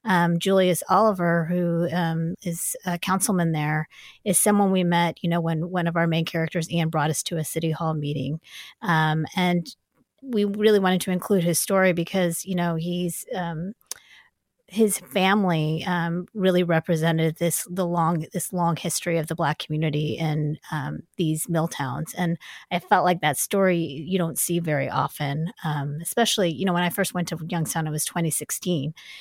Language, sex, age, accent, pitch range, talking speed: English, female, 30-49, American, 160-185 Hz, 180 wpm